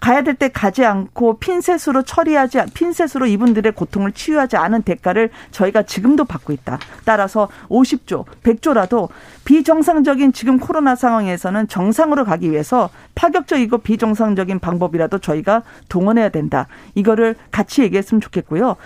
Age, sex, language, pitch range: 40-59, female, Korean, 200-275 Hz